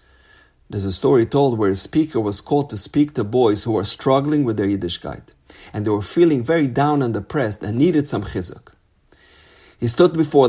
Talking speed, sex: 195 wpm, male